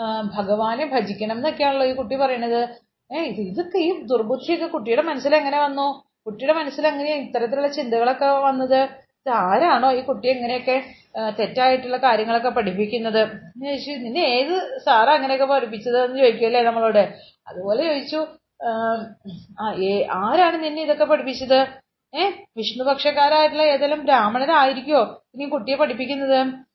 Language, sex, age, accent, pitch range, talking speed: Malayalam, female, 30-49, native, 230-280 Hz, 110 wpm